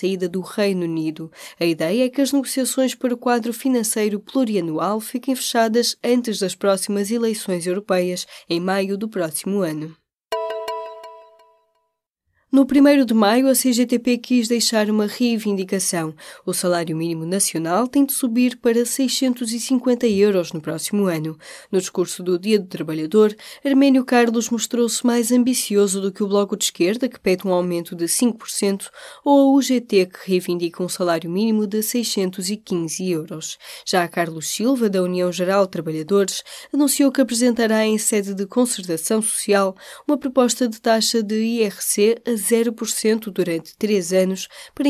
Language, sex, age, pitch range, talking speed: Portuguese, female, 20-39, 180-240 Hz, 150 wpm